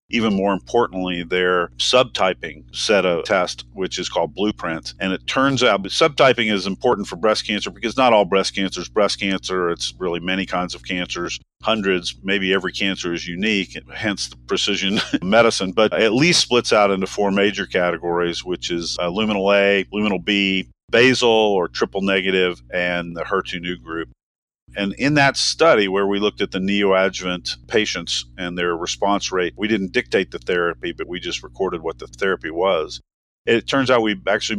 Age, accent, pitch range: 50-69, American, 90-105 Hz